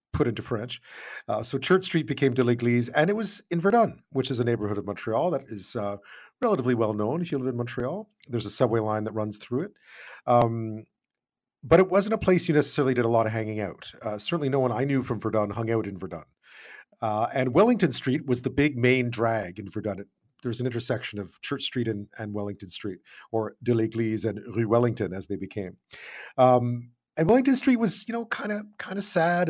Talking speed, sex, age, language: 220 wpm, male, 40-59, English